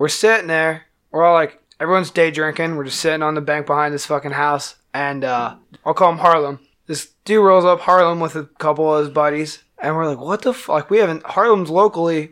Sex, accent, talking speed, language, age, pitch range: male, American, 230 wpm, English, 20-39, 155-185 Hz